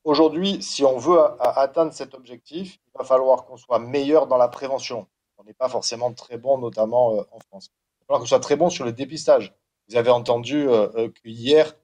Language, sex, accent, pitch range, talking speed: French, male, French, 125-165 Hz, 200 wpm